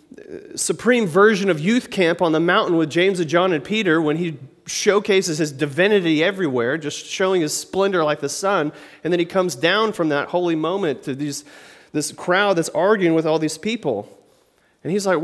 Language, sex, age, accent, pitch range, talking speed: English, male, 30-49, American, 150-205 Hz, 190 wpm